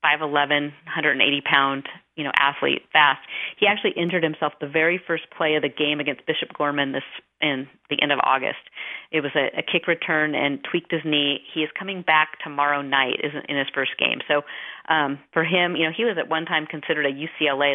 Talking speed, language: 205 wpm, English